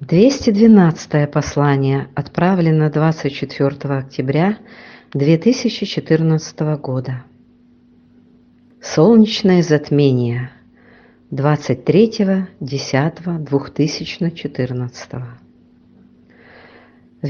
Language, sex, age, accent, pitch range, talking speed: Russian, female, 50-69, native, 135-180 Hz, 35 wpm